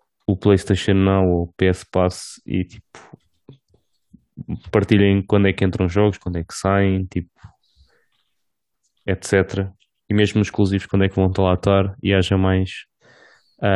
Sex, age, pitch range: male, 20-39, 95-105 Hz